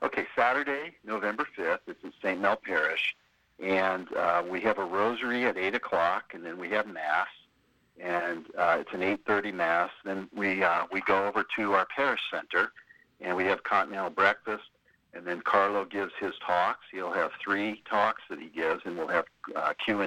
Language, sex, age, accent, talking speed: English, male, 60-79, American, 180 wpm